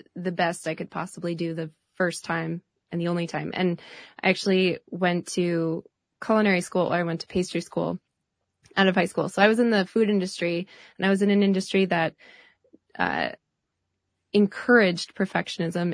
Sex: female